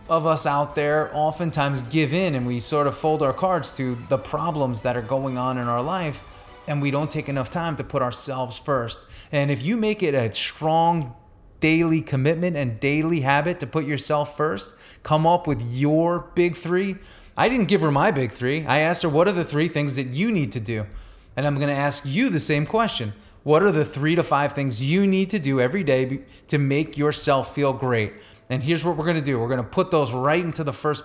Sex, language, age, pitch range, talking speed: male, English, 30-49, 125-155 Hz, 225 wpm